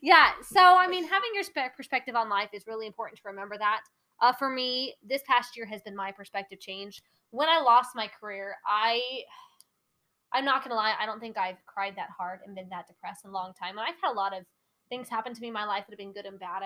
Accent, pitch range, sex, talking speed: American, 195-245 Hz, female, 255 wpm